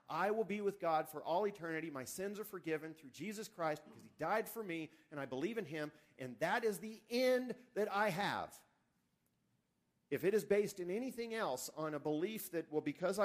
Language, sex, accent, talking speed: English, male, American, 210 wpm